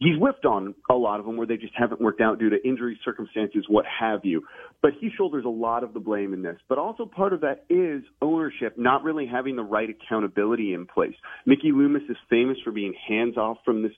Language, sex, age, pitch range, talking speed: English, male, 30-49, 105-130 Hz, 235 wpm